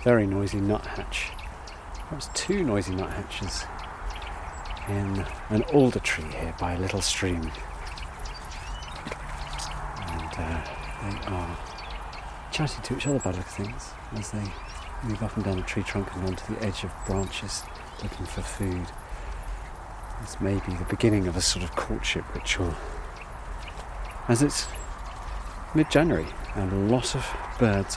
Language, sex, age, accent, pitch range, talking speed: English, male, 40-59, British, 80-115 Hz, 135 wpm